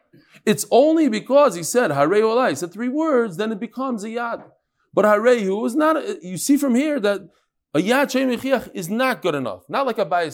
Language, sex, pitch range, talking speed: English, male, 150-230 Hz, 210 wpm